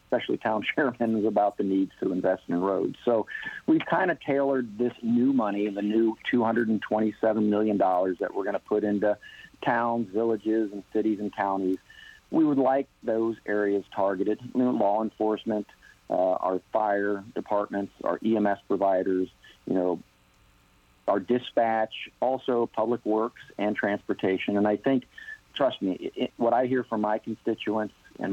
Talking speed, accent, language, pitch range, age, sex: 155 wpm, American, English, 100-120 Hz, 50-69, male